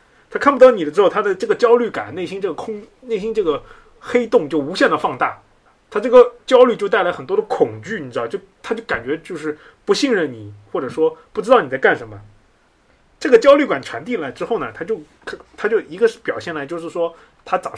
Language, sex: Chinese, male